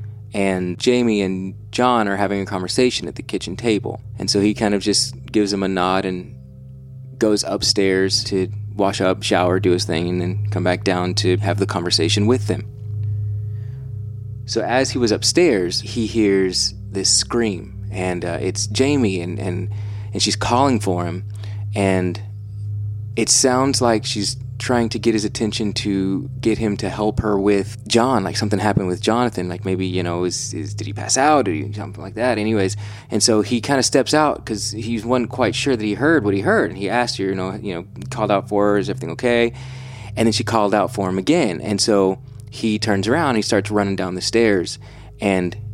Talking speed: 205 wpm